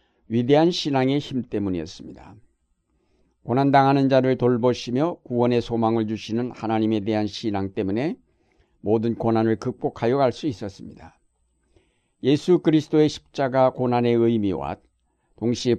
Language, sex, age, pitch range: Korean, male, 60-79, 110-135 Hz